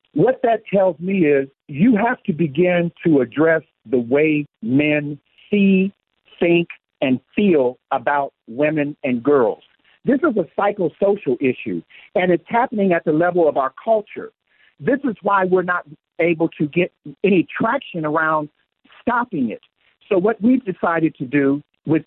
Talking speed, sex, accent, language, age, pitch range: 150 wpm, male, American, English, 50-69, 150-205 Hz